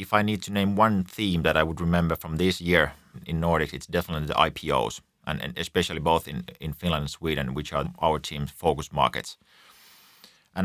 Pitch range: 80-95 Hz